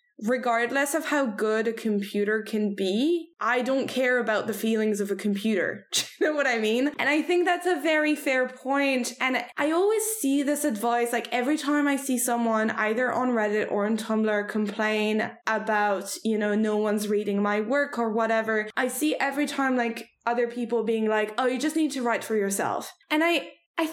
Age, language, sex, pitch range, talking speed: 10-29, English, female, 215-285 Hz, 200 wpm